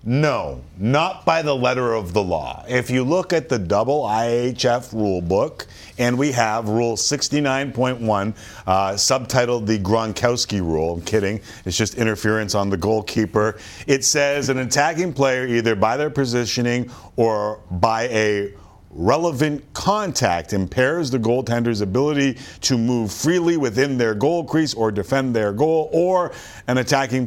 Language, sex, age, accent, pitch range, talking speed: English, male, 50-69, American, 110-145 Hz, 145 wpm